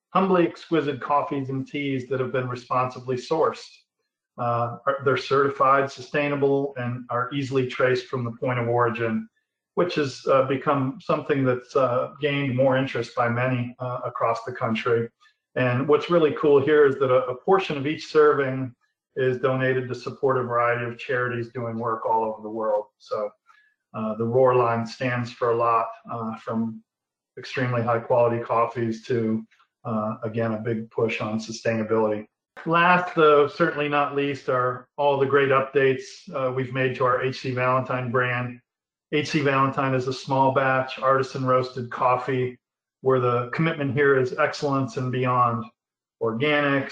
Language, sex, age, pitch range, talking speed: English, male, 40-59, 120-140 Hz, 160 wpm